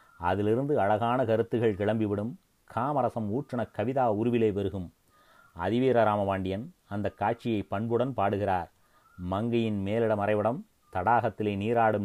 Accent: native